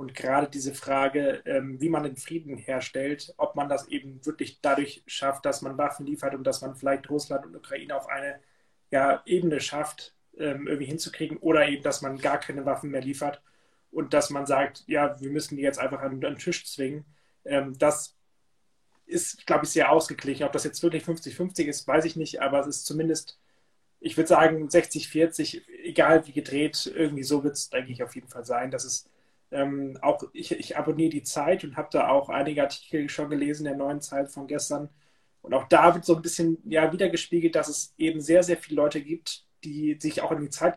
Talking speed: 200 wpm